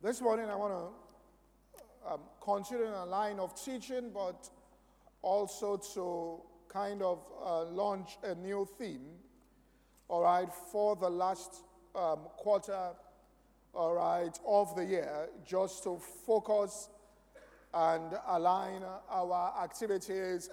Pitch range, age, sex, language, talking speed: 185-225 Hz, 50-69, male, English, 115 wpm